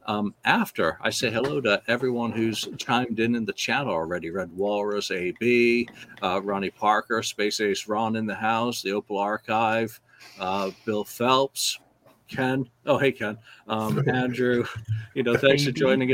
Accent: American